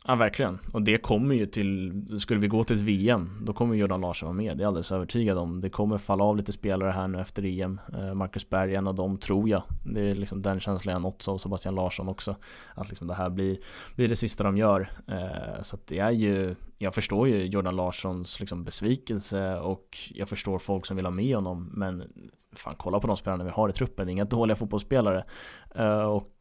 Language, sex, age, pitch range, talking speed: Swedish, male, 20-39, 95-105 Hz, 225 wpm